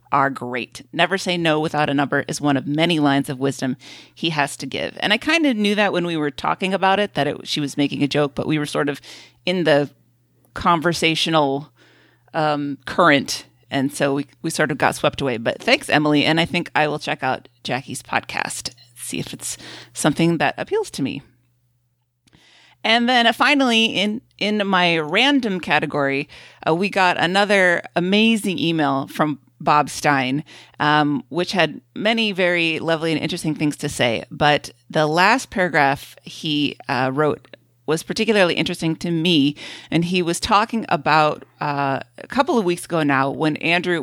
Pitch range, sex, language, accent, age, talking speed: 140-175 Hz, female, English, American, 30-49, 180 wpm